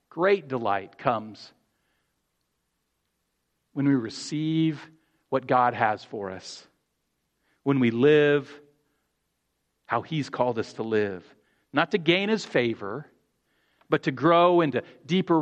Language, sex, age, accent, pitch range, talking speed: English, male, 40-59, American, 120-160 Hz, 115 wpm